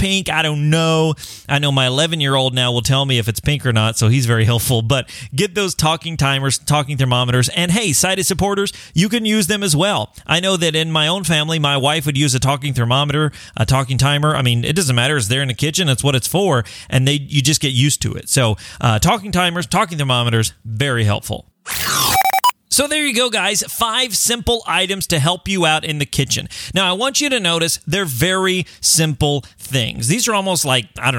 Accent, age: American, 30-49